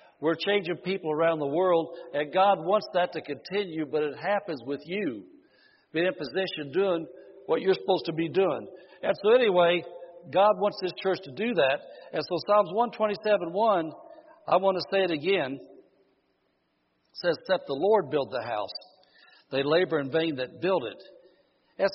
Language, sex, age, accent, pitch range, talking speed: English, male, 60-79, American, 170-260 Hz, 170 wpm